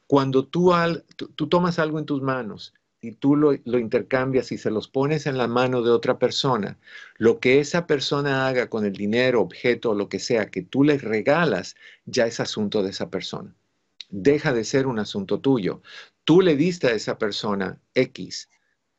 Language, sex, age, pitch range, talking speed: Spanish, male, 50-69, 110-145 Hz, 195 wpm